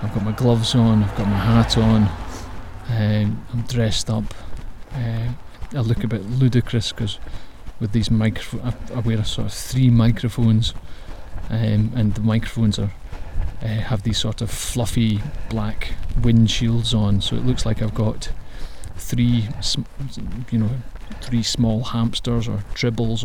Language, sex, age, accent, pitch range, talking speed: English, male, 30-49, British, 105-115 Hz, 155 wpm